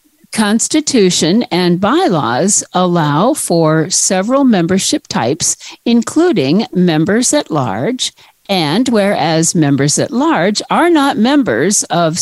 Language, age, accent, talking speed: English, 50-69, American, 105 wpm